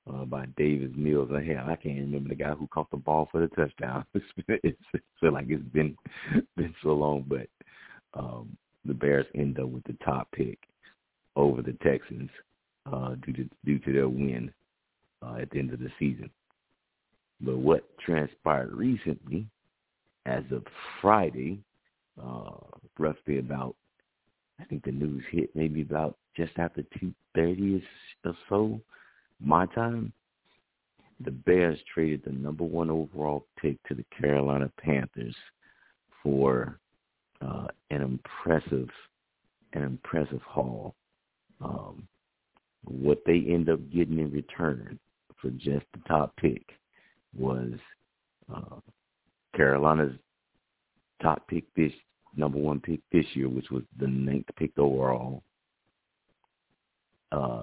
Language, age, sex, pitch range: English, 50-69, male, 65-80 Hz